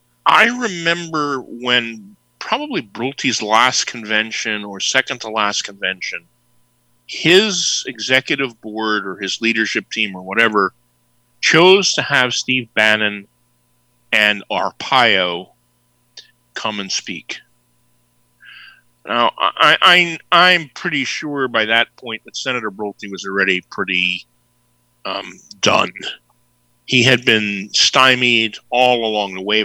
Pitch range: 105-140 Hz